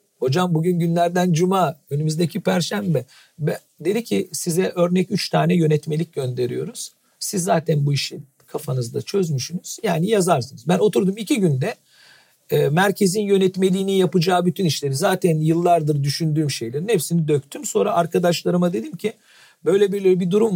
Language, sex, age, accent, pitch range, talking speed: Turkish, male, 50-69, native, 135-190 Hz, 135 wpm